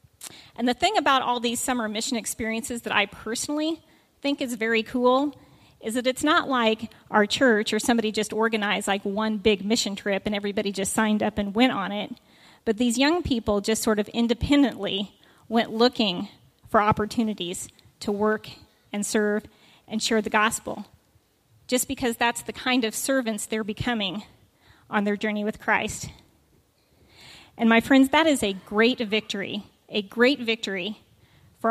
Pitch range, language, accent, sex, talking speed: 215-250 Hz, English, American, female, 165 wpm